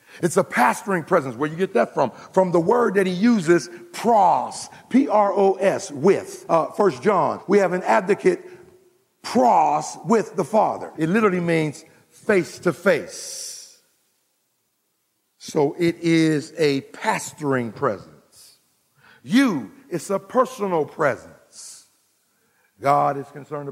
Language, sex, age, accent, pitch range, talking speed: English, male, 50-69, American, 125-190 Hz, 120 wpm